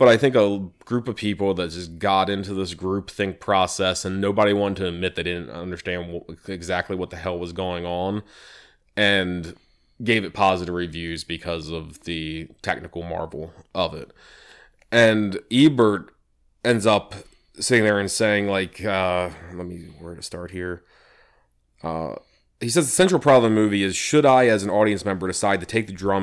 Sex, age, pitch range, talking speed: male, 20-39, 90-105 Hz, 185 wpm